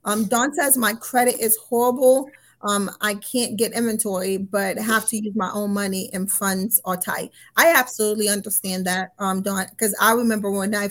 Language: English